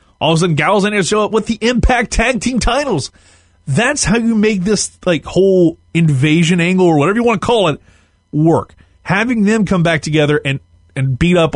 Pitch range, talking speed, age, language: 130-195 Hz, 215 wpm, 30-49, English